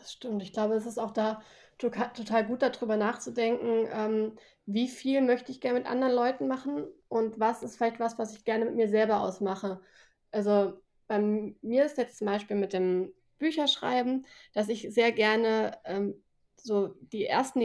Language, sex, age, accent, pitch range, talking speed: German, female, 20-39, German, 200-235 Hz, 180 wpm